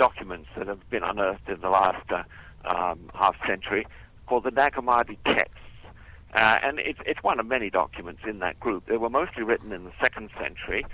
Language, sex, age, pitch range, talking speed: English, male, 60-79, 100-125 Hz, 195 wpm